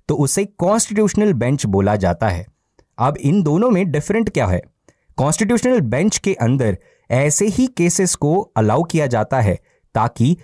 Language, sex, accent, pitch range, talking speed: Hindi, male, native, 120-185 Hz, 155 wpm